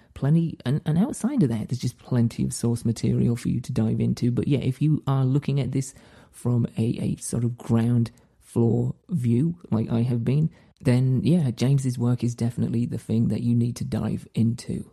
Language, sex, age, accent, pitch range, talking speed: English, male, 30-49, British, 115-145 Hz, 205 wpm